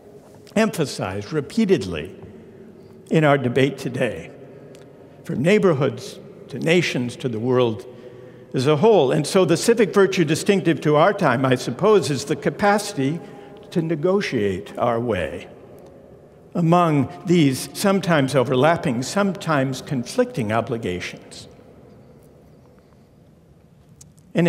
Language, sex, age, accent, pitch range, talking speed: English, male, 60-79, American, 130-190 Hz, 105 wpm